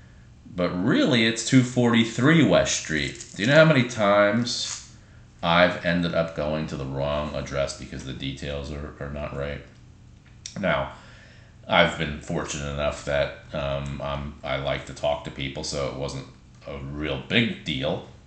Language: English